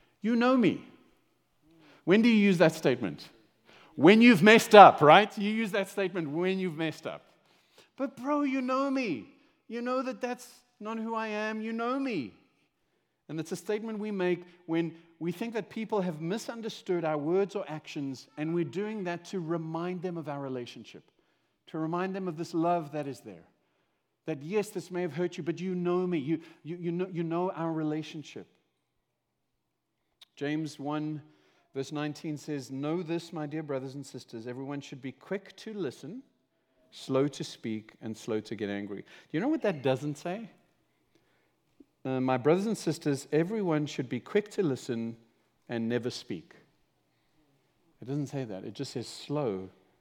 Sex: male